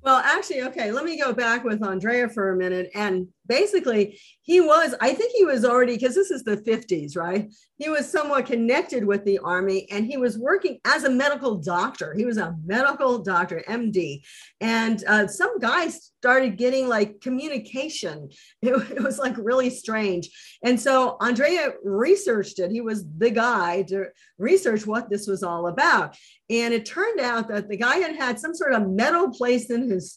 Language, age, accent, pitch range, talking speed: English, 50-69, American, 205-270 Hz, 185 wpm